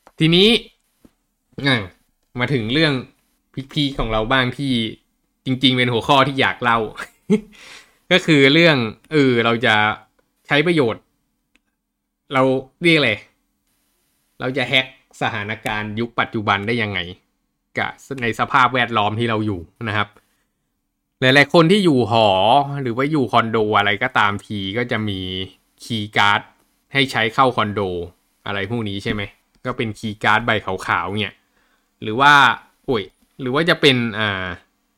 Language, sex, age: Thai, male, 20-39